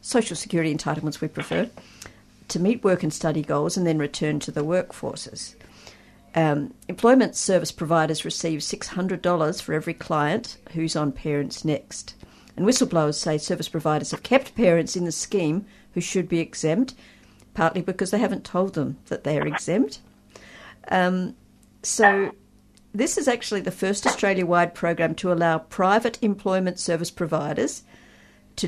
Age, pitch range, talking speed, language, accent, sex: 50-69, 160-205 Hz, 145 wpm, English, Australian, female